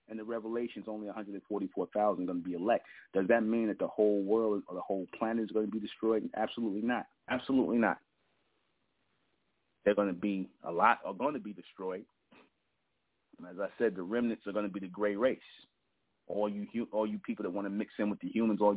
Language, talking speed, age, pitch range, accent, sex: English, 215 wpm, 30-49, 95-110 Hz, American, male